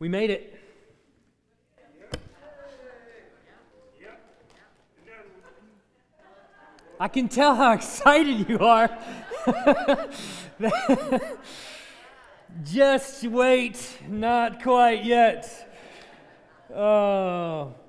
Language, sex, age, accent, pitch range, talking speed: English, male, 30-49, American, 150-235 Hz, 55 wpm